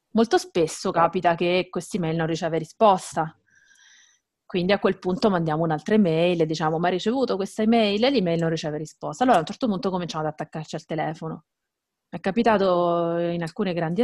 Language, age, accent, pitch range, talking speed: Italian, 30-49, native, 160-195 Hz, 185 wpm